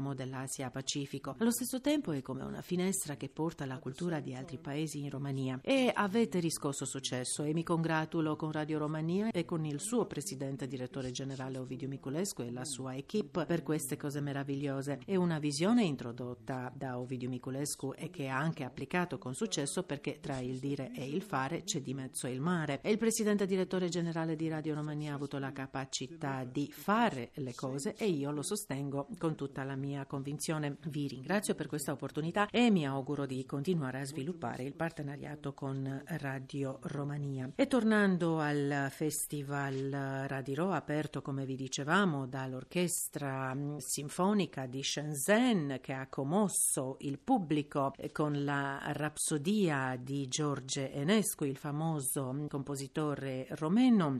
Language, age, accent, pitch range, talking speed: Italian, 50-69, native, 135-165 Hz, 155 wpm